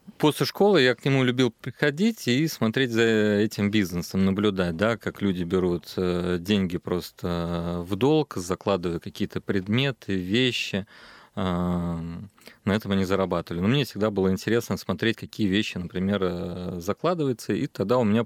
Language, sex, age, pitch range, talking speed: Russian, male, 30-49, 90-110 Hz, 140 wpm